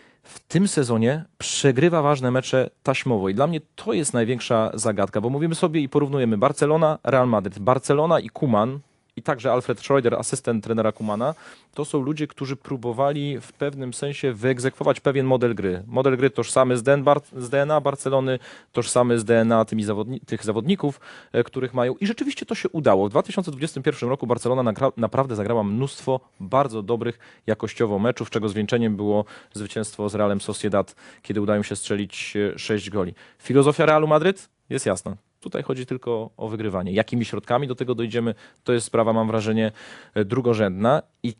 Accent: native